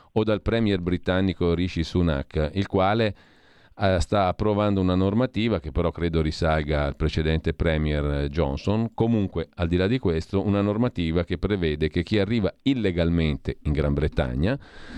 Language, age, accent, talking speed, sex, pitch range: Italian, 40-59, native, 150 wpm, male, 80-100 Hz